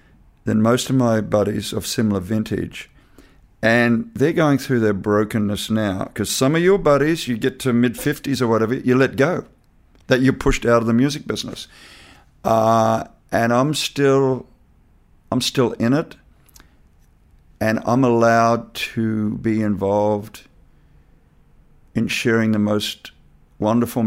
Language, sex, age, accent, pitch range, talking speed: English, male, 50-69, Australian, 105-125 Hz, 140 wpm